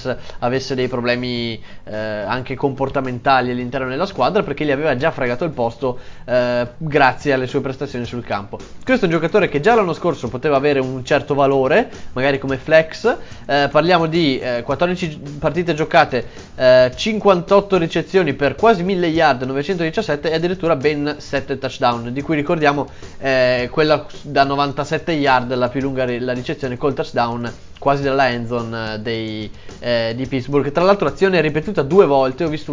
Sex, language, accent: male, Italian, native